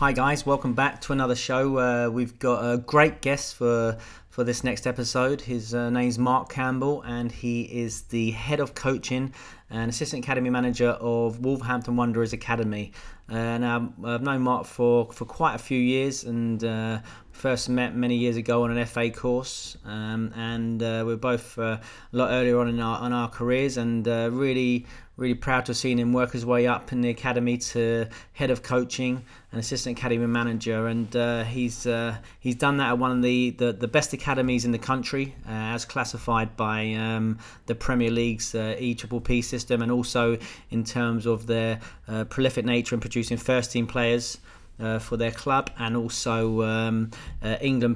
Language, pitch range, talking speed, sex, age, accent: English, 115-125 Hz, 190 wpm, male, 30-49, British